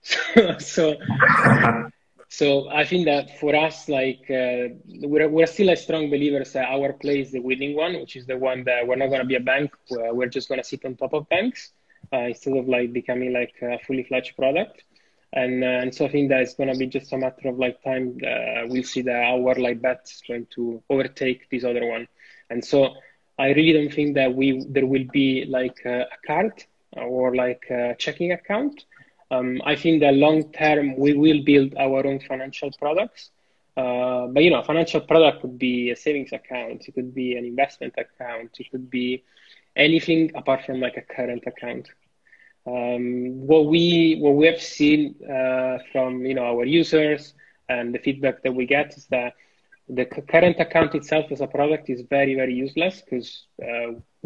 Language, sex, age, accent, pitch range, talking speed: English, male, 20-39, Italian, 125-150 Hz, 195 wpm